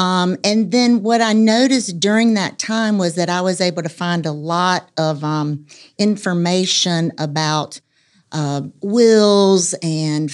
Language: English